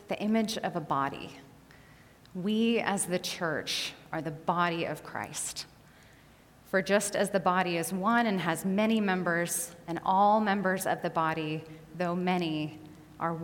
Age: 30-49